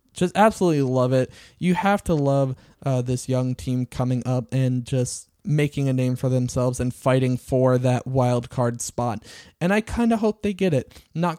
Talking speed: 195 wpm